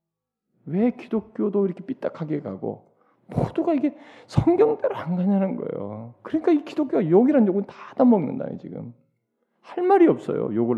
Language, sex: Korean, male